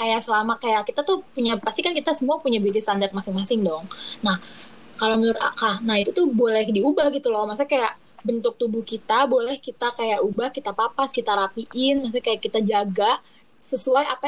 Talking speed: 190 wpm